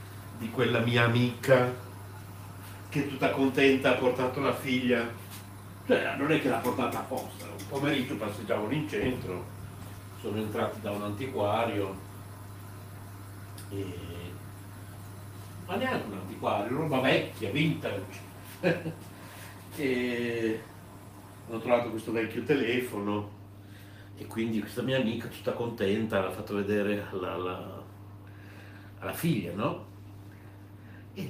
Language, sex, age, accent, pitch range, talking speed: Italian, male, 60-79, native, 100-110 Hz, 115 wpm